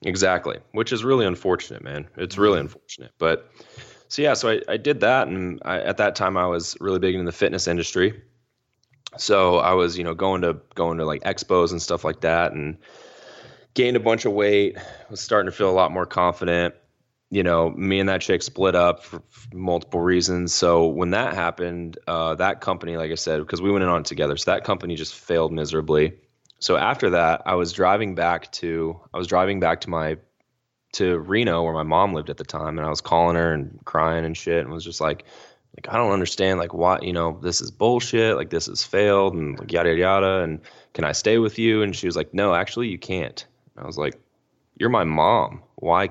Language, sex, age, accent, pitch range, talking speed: English, male, 10-29, American, 80-95 Hz, 225 wpm